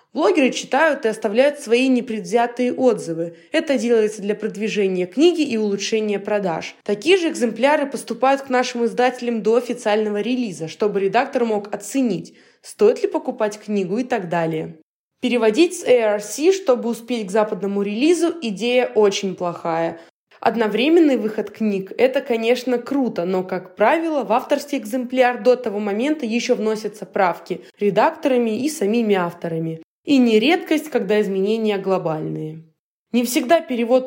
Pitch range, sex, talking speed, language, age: 200-255 Hz, female, 135 wpm, Russian, 20-39